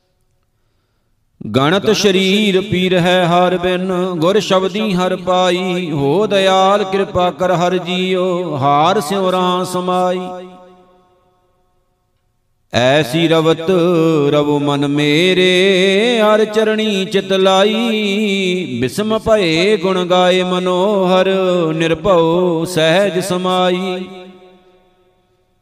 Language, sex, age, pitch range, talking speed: Punjabi, male, 50-69, 165-190 Hz, 85 wpm